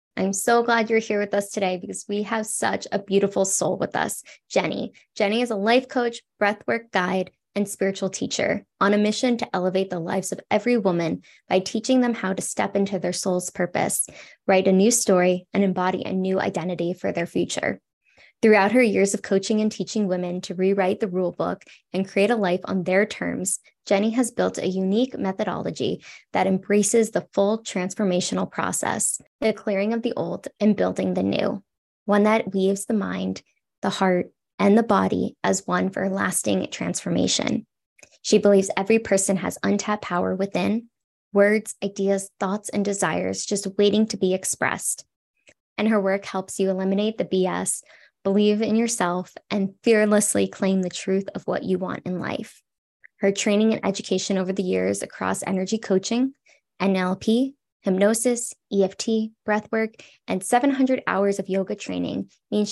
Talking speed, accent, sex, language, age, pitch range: 170 wpm, American, female, English, 10-29, 190-220 Hz